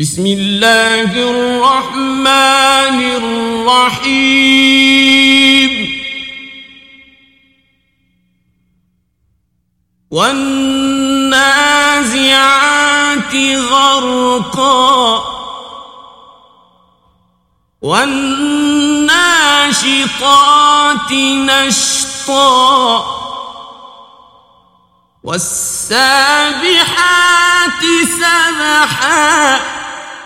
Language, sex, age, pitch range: Persian, male, 50-69, 240-300 Hz